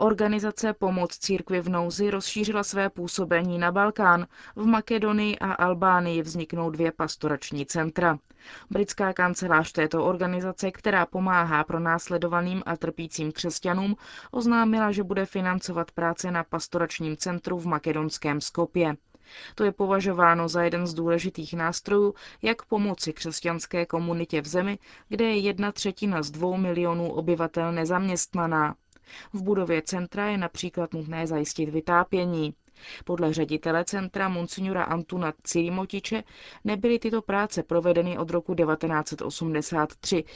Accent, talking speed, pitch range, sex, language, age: native, 125 wpm, 165-195 Hz, female, Czech, 20-39